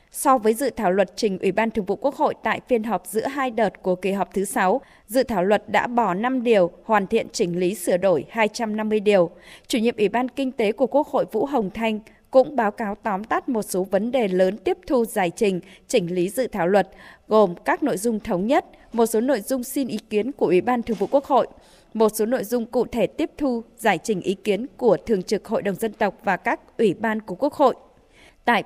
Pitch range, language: 195-250 Hz, Vietnamese